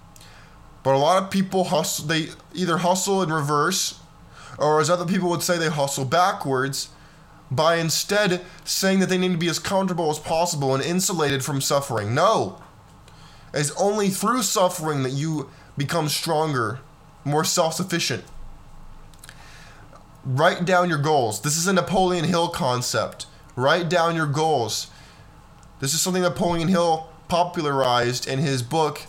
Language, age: English, 20-39